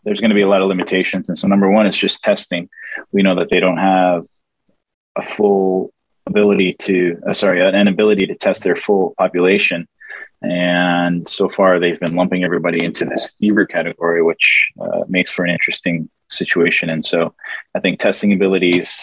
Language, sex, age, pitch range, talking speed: English, male, 20-39, 85-95 Hz, 185 wpm